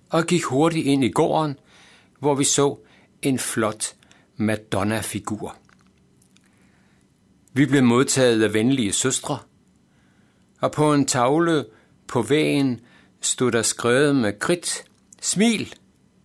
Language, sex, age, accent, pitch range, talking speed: Danish, male, 60-79, native, 110-155 Hz, 110 wpm